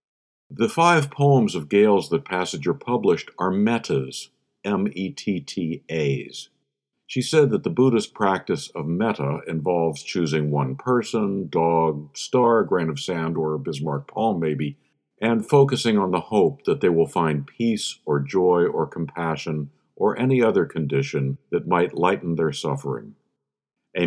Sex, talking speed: male, 140 wpm